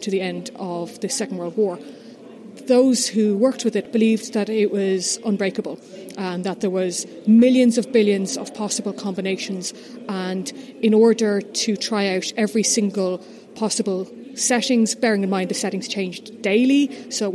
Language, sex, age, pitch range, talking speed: English, female, 30-49, 195-230 Hz, 165 wpm